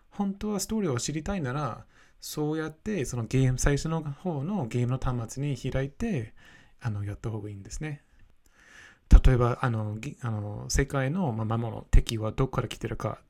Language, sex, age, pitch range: Japanese, male, 20-39, 110-150 Hz